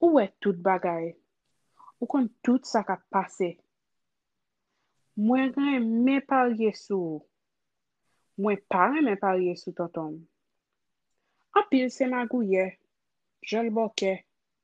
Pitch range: 190-250 Hz